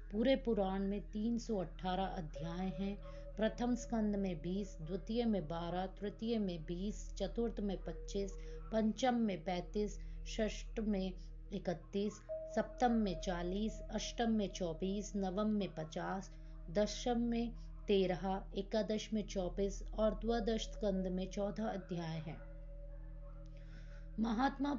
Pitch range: 180-220 Hz